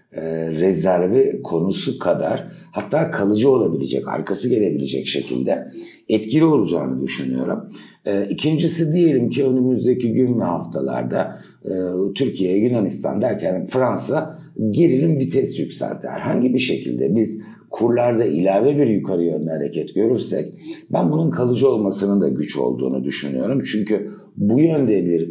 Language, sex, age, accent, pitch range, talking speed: Turkish, male, 60-79, native, 85-135 Hz, 125 wpm